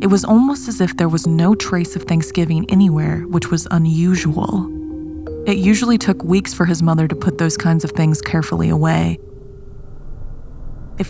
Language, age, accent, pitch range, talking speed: English, 20-39, American, 155-185 Hz, 170 wpm